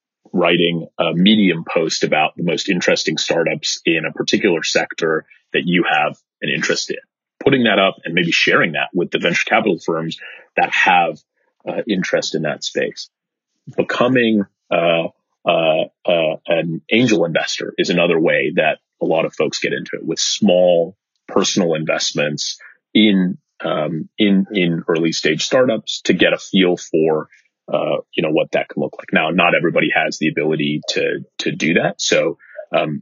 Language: English